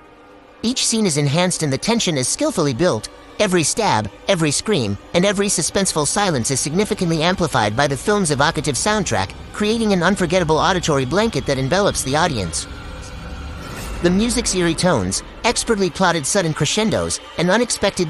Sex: male